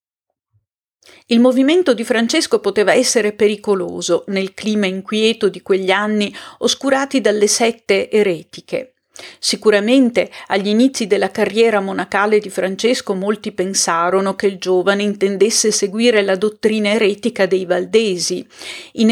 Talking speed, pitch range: 120 wpm, 190-225 Hz